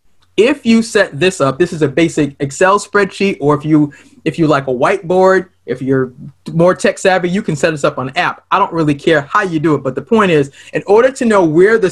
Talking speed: 245 wpm